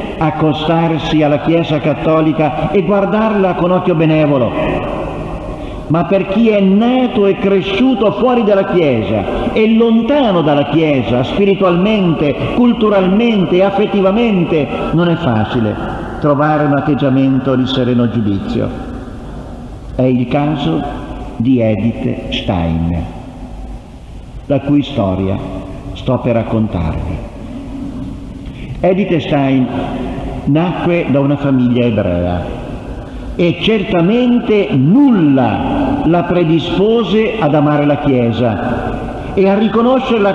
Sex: male